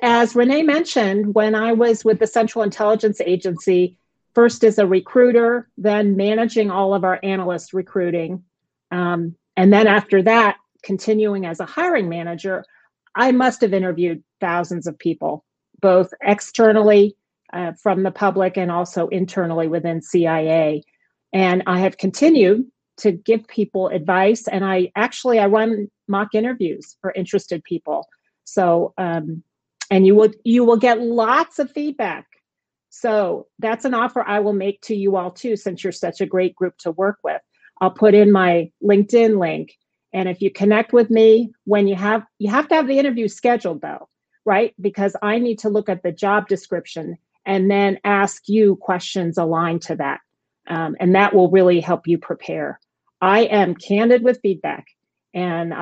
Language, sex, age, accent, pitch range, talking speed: English, female, 40-59, American, 180-220 Hz, 165 wpm